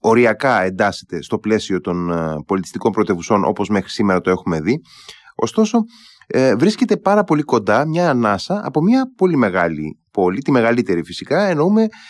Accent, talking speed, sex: native, 150 wpm, male